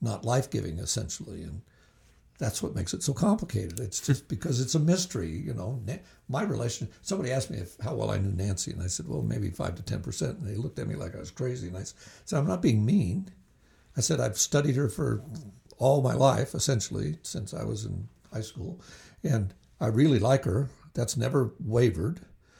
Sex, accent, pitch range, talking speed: male, American, 100-135 Hz, 200 wpm